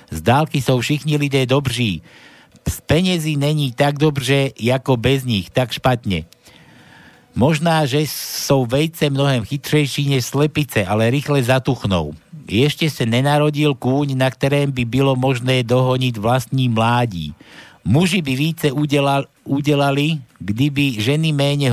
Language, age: Slovak, 60-79